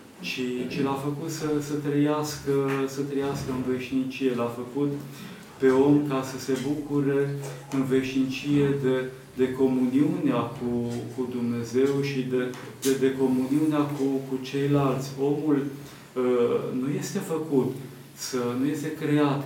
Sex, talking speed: male, 135 wpm